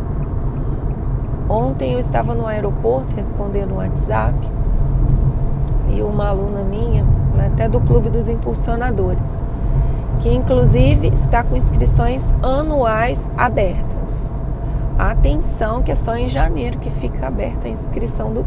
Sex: female